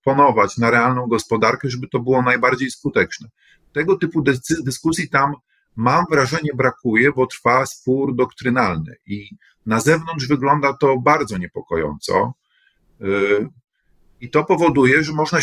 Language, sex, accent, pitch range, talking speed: Polish, male, native, 120-150 Hz, 120 wpm